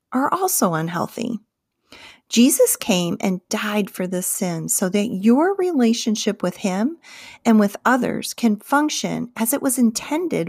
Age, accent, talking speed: 40-59, American, 145 wpm